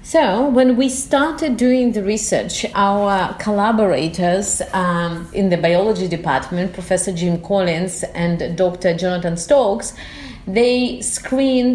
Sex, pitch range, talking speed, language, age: female, 185-230 Hz, 115 wpm, English, 30-49